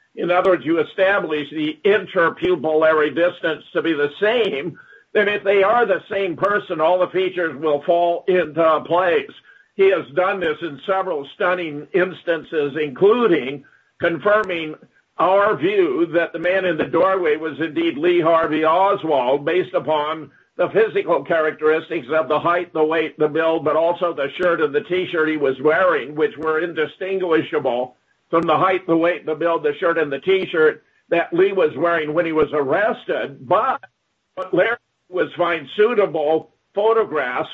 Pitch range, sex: 155-190 Hz, male